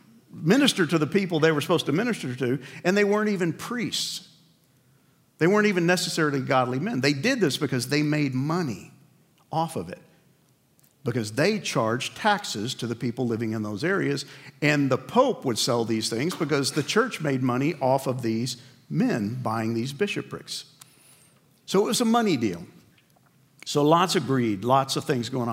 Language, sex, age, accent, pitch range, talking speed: English, male, 50-69, American, 130-165 Hz, 175 wpm